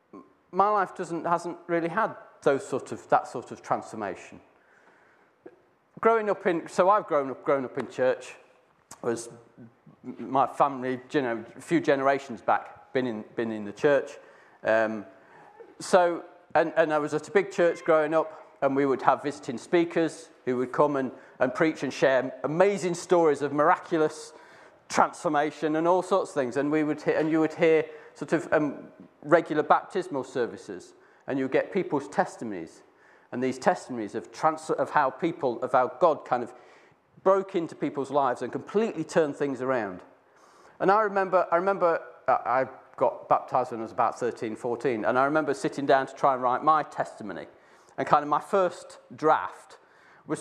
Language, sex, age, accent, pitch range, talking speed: English, male, 40-59, British, 140-185 Hz, 175 wpm